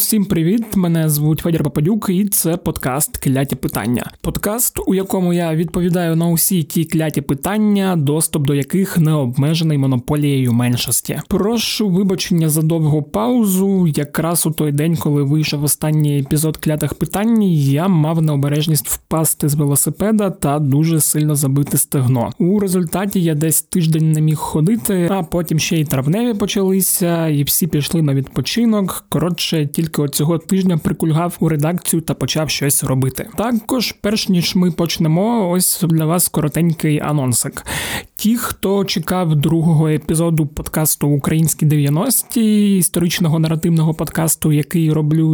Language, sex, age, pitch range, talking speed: Ukrainian, male, 20-39, 150-185 Hz, 145 wpm